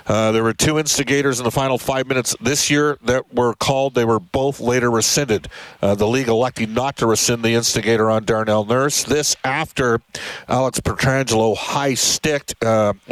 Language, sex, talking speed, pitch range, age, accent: English, male, 175 wpm, 115-140 Hz, 50-69, American